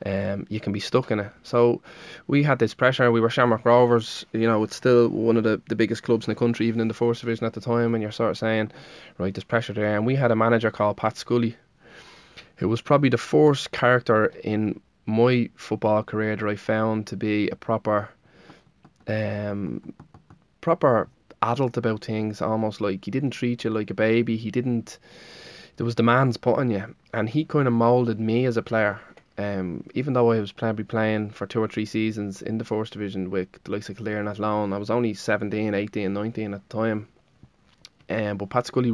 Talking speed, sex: 210 wpm, male